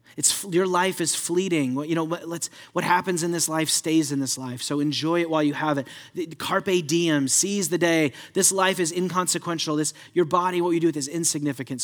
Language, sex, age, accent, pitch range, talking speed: English, male, 30-49, American, 145-190 Hz, 230 wpm